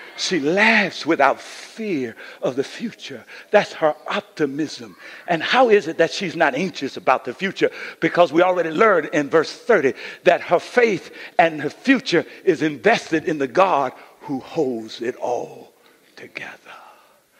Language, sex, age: English, male, 60-79